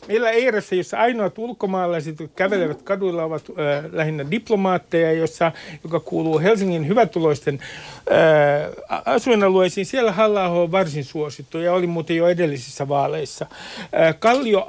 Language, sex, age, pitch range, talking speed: Finnish, male, 60-79, 155-200 Hz, 125 wpm